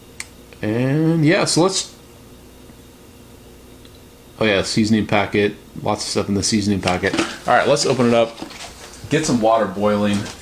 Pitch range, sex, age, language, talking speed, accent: 105-130 Hz, male, 30-49, English, 145 wpm, American